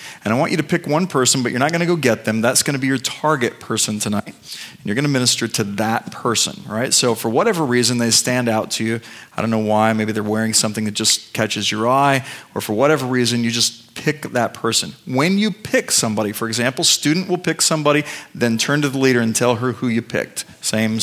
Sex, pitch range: male, 110-145 Hz